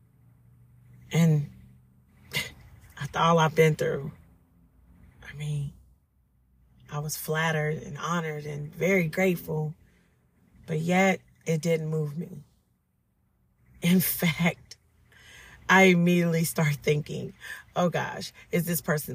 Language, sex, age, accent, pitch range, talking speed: English, female, 40-59, American, 145-195 Hz, 105 wpm